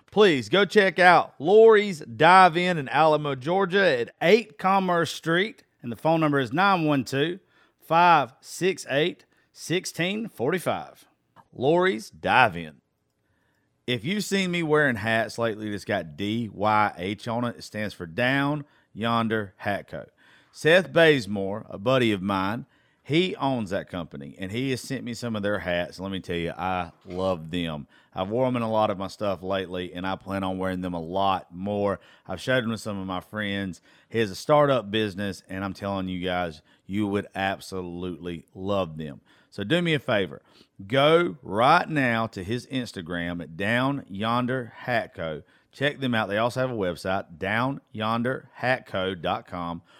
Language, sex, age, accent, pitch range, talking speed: English, male, 40-59, American, 95-140 Hz, 155 wpm